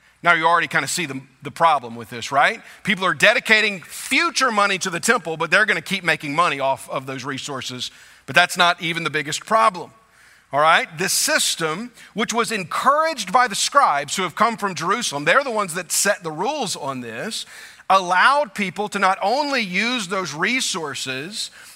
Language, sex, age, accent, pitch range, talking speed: English, male, 40-59, American, 165-235 Hz, 190 wpm